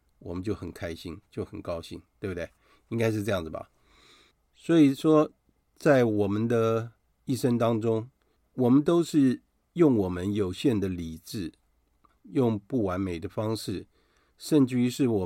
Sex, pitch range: male, 85-125 Hz